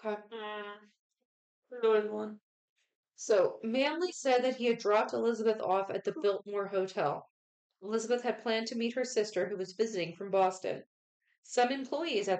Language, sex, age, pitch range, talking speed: English, female, 30-49, 180-225 Hz, 140 wpm